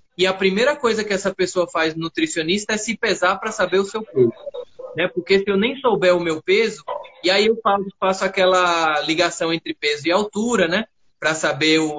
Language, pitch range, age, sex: Portuguese, 170-215 Hz, 20-39, male